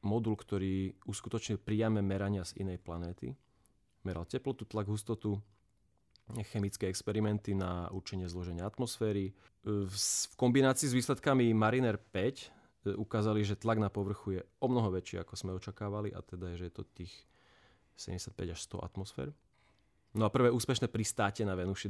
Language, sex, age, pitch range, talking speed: Slovak, male, 30-49, 95-115 Hz, 150 wpm